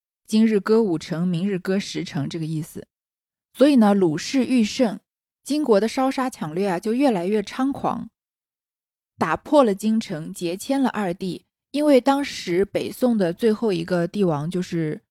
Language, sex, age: Chinese, female, 20-39